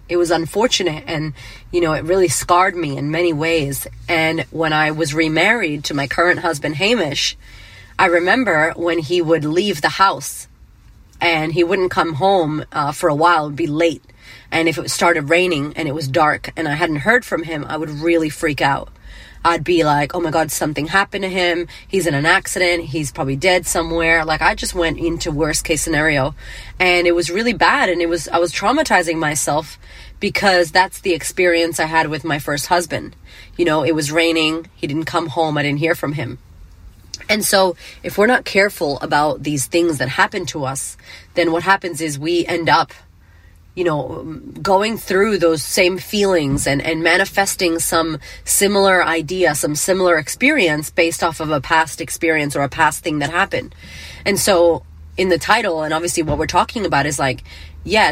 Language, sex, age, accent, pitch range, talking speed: English, female, 30-49, American, 150-175 Hz, 195 wpm